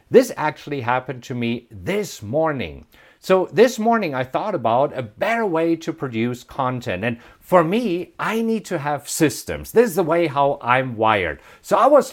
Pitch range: 130-190 Hz